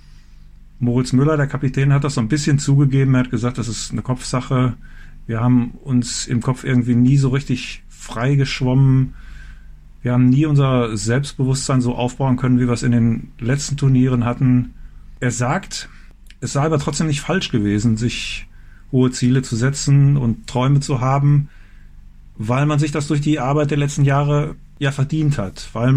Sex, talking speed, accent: male, 175 wpm, German